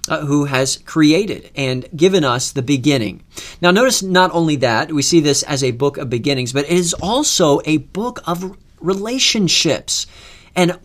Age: 40-59